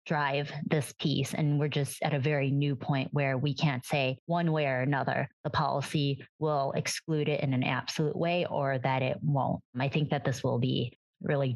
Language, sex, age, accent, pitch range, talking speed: English, female, 20-39, American, 135-155 Hz, 200 wpm